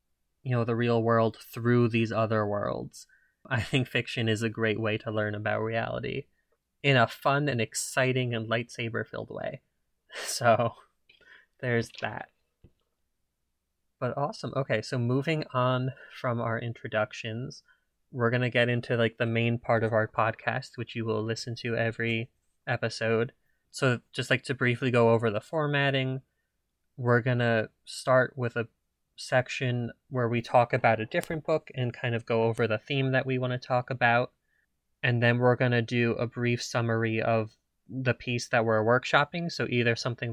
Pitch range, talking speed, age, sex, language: 115-125 Hz, 170 wpm, 20-39, male, English